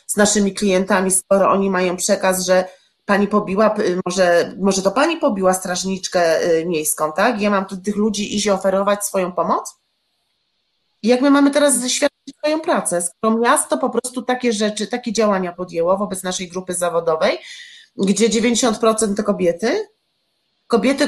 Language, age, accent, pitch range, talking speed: Polish, 30-49, native, 195-245 Hz, 145 wpm